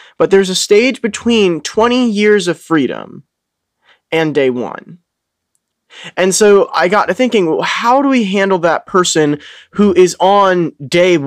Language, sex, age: English, male, 20-39